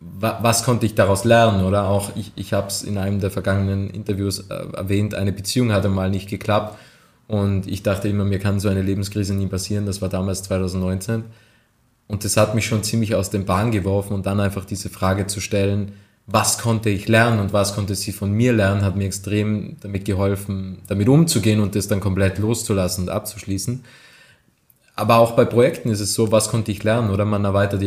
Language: German